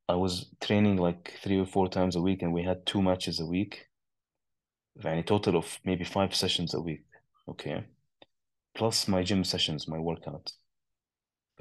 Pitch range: 90-110 Hz